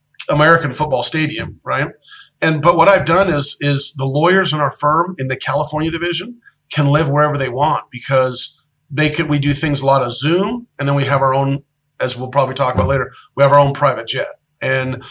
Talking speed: 215 wpm